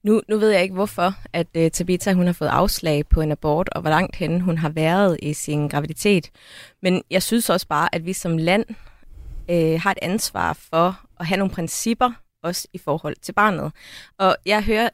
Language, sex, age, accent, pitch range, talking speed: Danish, female, 30-49, native, 170-220 Hz, 210 wpm